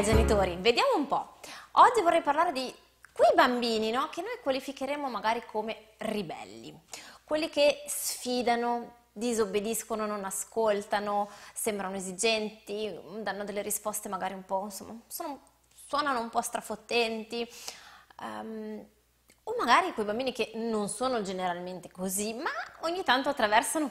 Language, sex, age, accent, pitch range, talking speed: Italian, female, 20-39, native, 205-265 Hz, 120 wpm